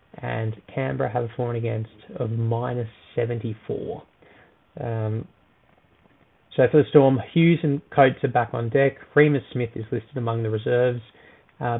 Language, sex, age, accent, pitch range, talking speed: English, male, 20-39, Australian, 115-140 Hz, 155 wpm